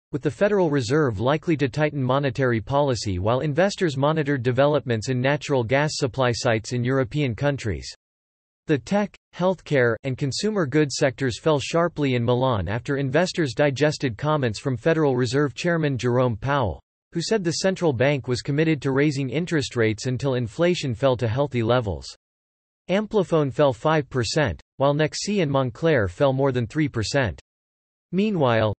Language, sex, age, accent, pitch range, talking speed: English, male, 40-59, American, 125-155 Hz, 150 wpm